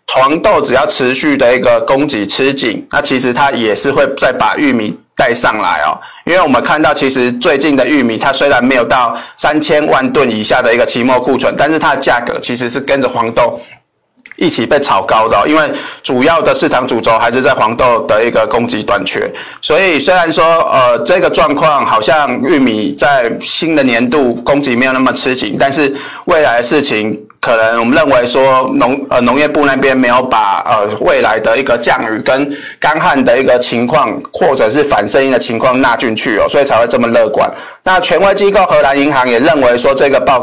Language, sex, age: Chinese, male, 20-39